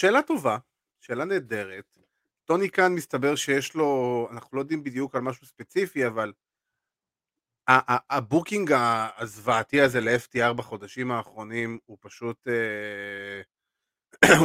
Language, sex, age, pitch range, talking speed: Hebrew, male, 30-49, 110-135 Hz, 115 wpm